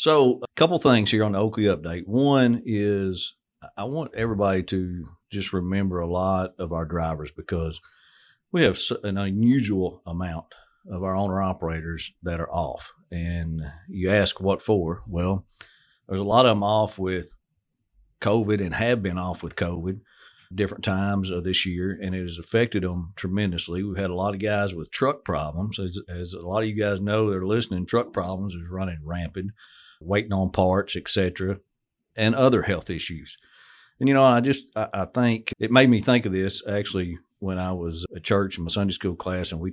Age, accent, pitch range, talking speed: 50-69, American, 90-105 Hz, 190 wpm